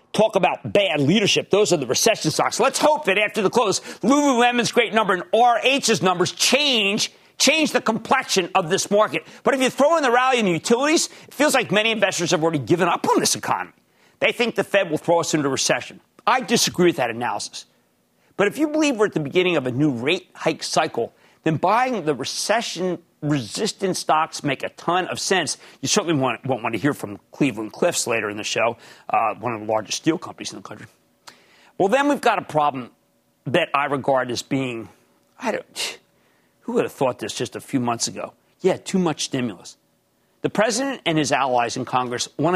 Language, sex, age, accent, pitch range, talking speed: English, male, 50-69, American, 145-220 Hz, 205 wpm